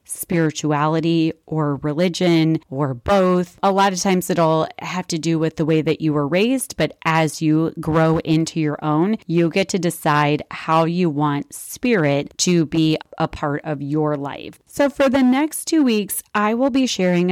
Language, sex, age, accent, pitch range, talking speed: English, female, 30-49, American, 155-195 Hz, 180 wpm